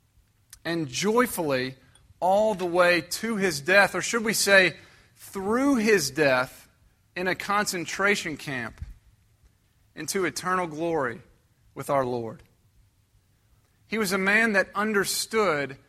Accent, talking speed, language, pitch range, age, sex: American, 115 wpm, English, 110-185 Hz, 40-59, male